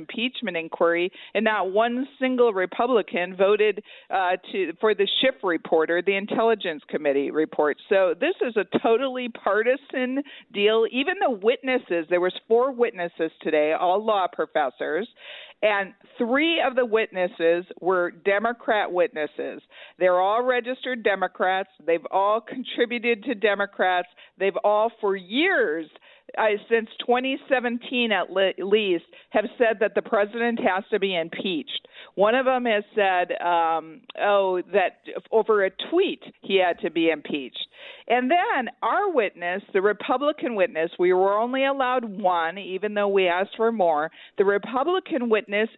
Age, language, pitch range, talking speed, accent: 50-69, English, 185-255 Hz, 145 wpm, American